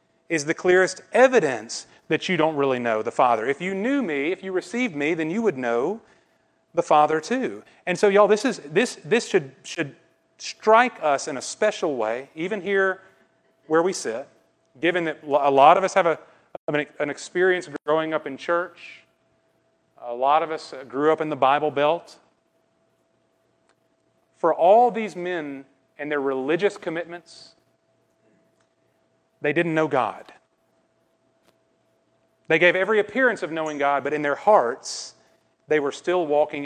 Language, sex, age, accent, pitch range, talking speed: English, male, 30-49, American, 140-185 Hz, 160 wpm